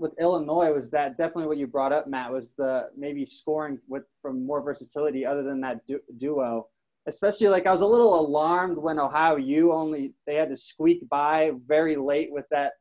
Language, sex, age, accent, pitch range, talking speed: English, male, 20-39, American, 140-165 Hz, 190 wpm